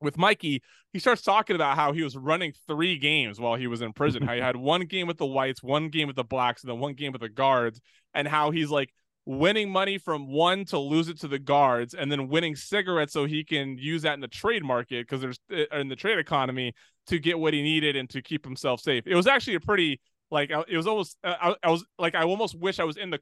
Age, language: 20-39, English